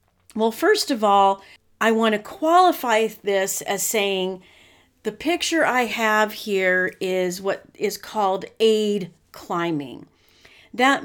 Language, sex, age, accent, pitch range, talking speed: English, female, 40-59, American, 195-245 Hz, 125 wpm